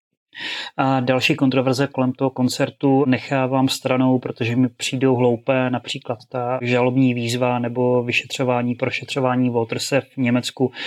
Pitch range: 125-150 Hz